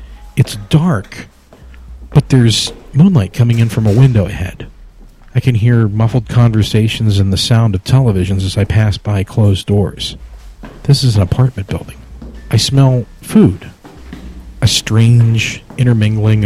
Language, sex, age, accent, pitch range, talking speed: English, male, 50-69, American, 95-120 Hz, 140 wpm